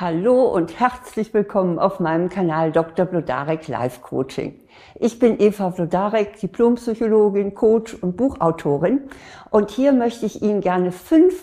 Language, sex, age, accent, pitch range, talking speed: German, female, 60-79, German, 175-225 Hz, 135 wpm